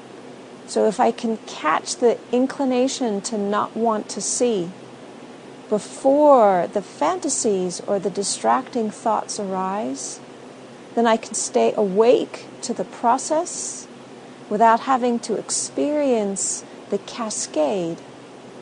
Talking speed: 110 wpm